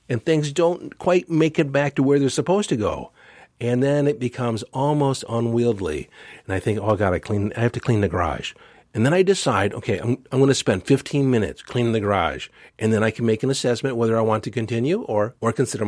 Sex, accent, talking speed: male, American, 225 wpm